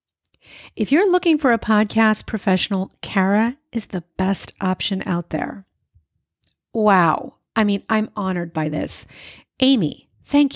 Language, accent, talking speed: English, American, 130 wpm